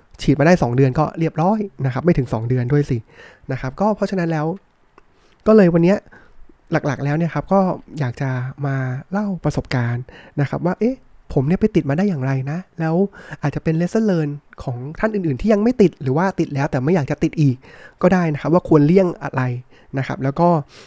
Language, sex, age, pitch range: Thai, male, 20-39, 135-175 Hz